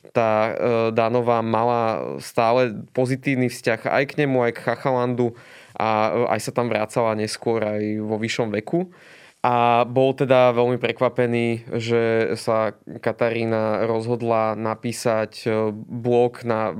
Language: Slovak